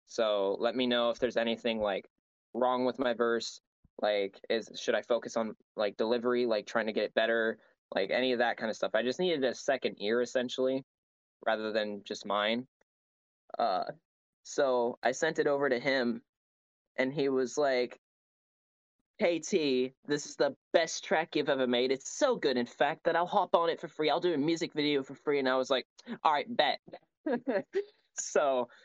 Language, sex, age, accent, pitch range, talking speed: English, male, 10-29, American, 115-145 Hz, 195 wpm